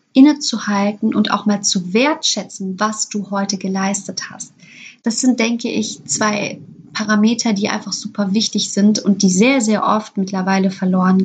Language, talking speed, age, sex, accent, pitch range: German, 155 wpm, 20-39, female, German, 195-230 Hz